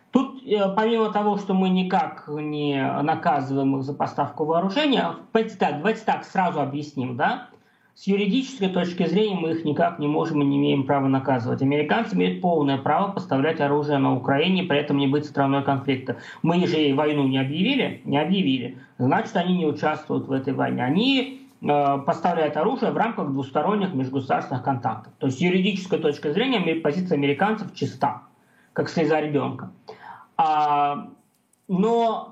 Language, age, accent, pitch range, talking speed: Russian, 20-39, native, 145-205 Hz, 150 wpm